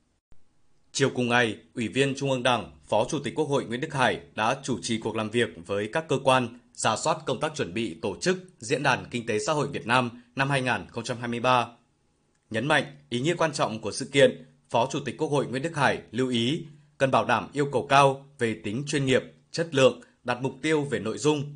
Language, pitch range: Vietnamese, 120-140 Hz